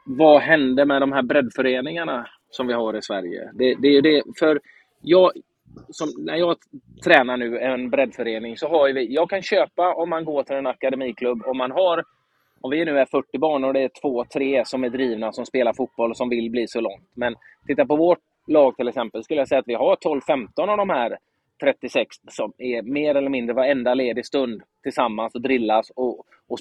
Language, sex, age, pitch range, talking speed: Swedish, male, 20-39, 120-145 Hz, 205 wpm